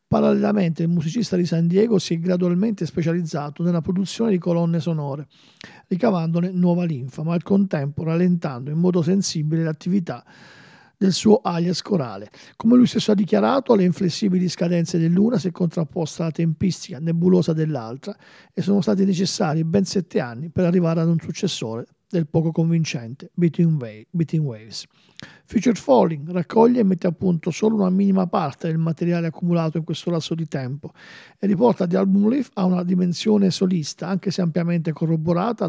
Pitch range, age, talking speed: 165-195 Hz, 50-69, 160 wpm